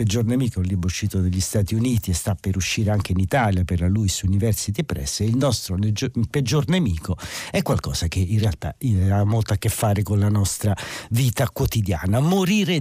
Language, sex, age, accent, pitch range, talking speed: Italian, male, 50-69, native, 95-125 Hz, 190 wpm